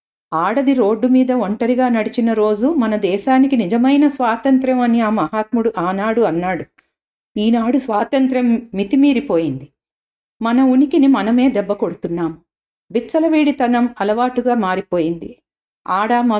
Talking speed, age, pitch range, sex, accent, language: 95 wpm, 40-59, 210-260 Hz, female, native, Telugu